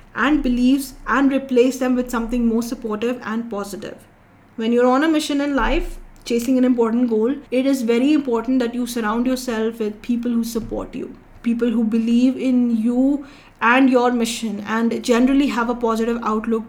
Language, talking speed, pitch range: English, 175 wpm, 220-250 Hz